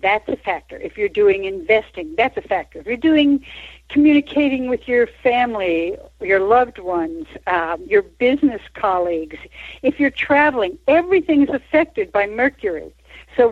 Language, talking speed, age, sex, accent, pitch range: English, 145 wpm, 60-79, female, American, 190-275 Hz